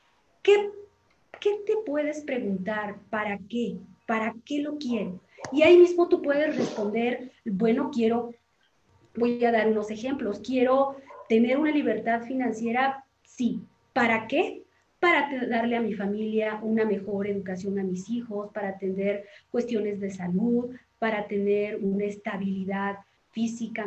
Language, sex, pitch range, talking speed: Spanish, female, 205-255 Hz, 135 wpm